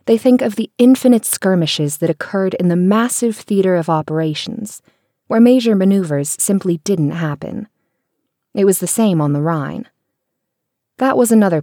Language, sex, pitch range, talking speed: English, female, 160-210 Hz, 155 wpm